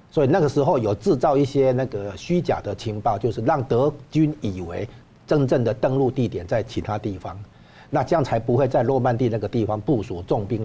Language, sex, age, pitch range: Chinese, male, 60-79, 105-140 Hz